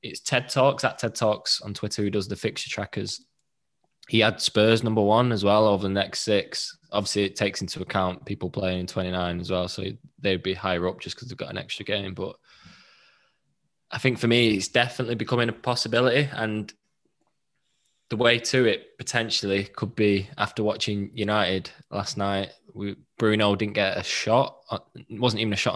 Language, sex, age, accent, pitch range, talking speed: English, male, 10-29, British, 100-115 Hz, 185 wpm